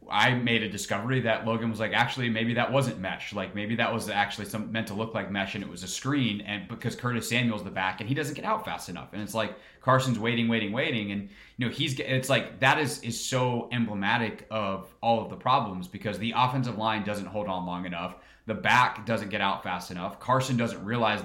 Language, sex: English, male